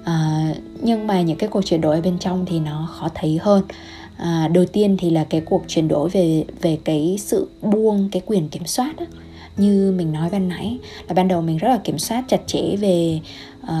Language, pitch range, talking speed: Vietnamese, 165-195 Hz, 225 wpm